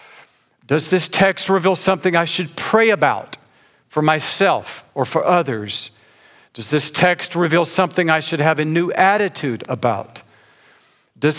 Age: 50-69